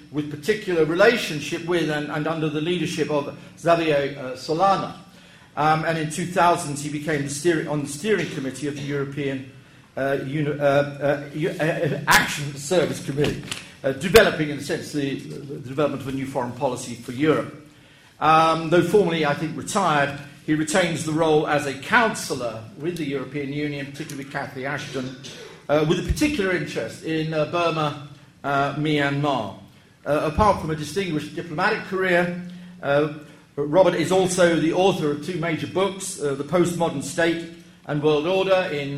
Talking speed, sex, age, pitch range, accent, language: 160 wpm, male, 50-69, 145-175 Hz, British, English